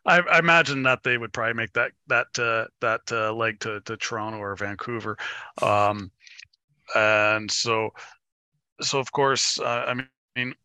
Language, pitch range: English, 110-130 Hz